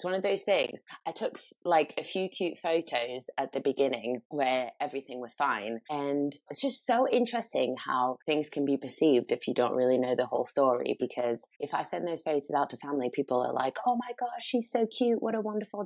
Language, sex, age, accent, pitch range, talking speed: English, female, 20-39, British, 140-215 Hz, 215 wpm